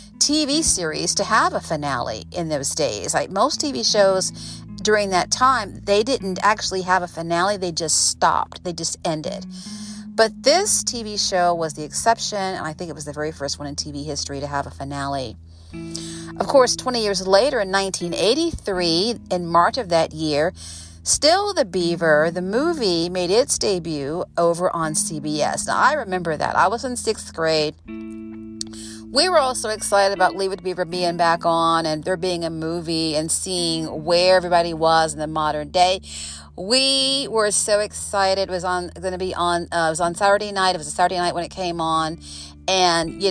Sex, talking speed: female, 190 wpm